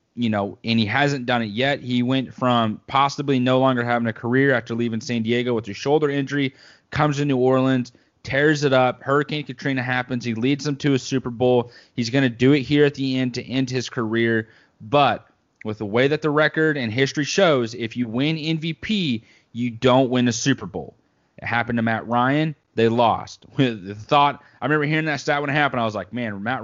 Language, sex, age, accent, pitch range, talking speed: English, male, 30-49, American, 120-140 Hz, 220 wpm